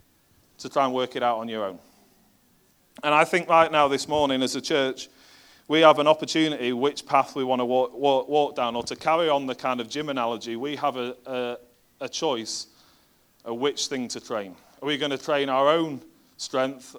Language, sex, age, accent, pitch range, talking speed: English, male, 30-49, British, 120-145 Hz, 210 wpm